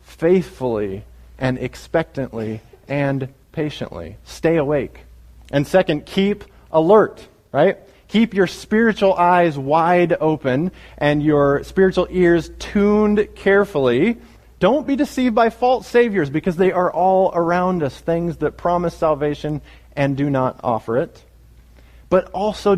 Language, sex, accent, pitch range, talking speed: English, male, American, 110-165 Hz, 125 wpm